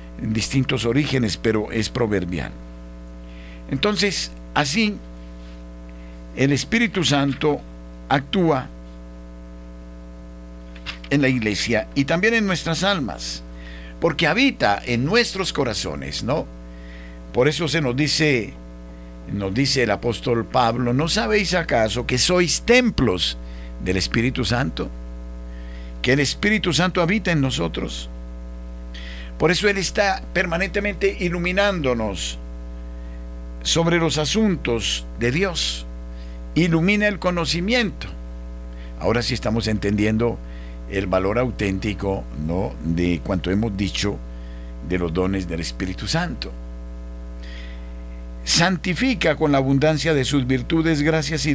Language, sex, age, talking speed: Spanish, male, 50-69, 105 wpm